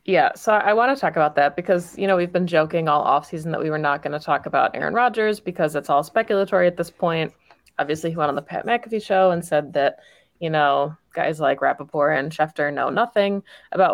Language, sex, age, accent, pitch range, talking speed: English, female, 20-39, American, 155-185 Hz, 230 wpm